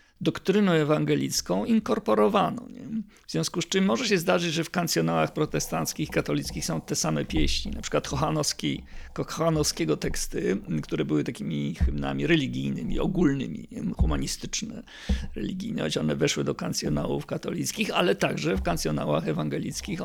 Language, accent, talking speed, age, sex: Polish, native, 130 wpm, 50-69, male